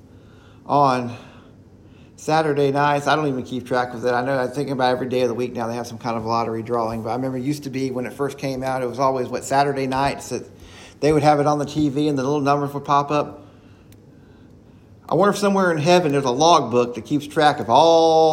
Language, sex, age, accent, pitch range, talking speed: English, male, 40-59, American, 115-165 Hz, 245 wpm